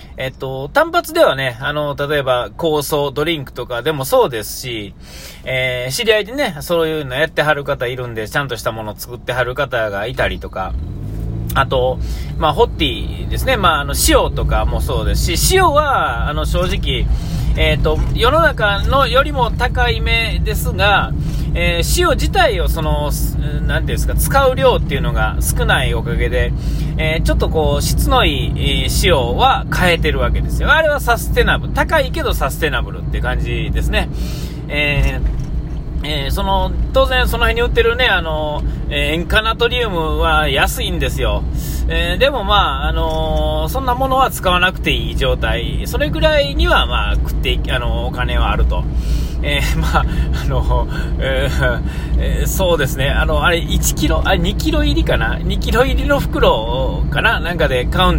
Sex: male